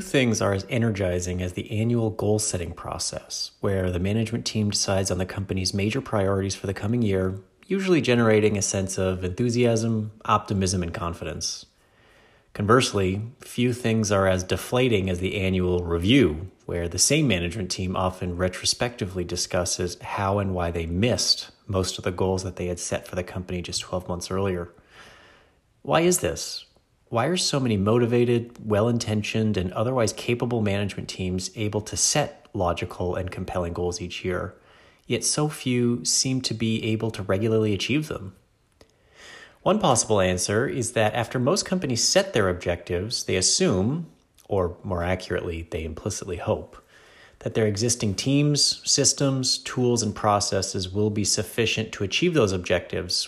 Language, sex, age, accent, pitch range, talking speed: English, male, 30-49, American, 95-120 Hz, 155 wpm